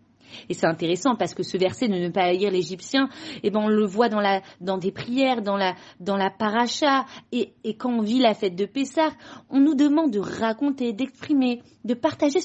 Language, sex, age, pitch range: French, female, 40-59, 185-255 Hz